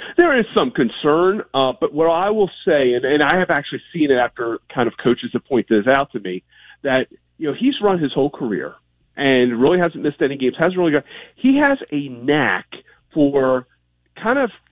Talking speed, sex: 210 wpm, male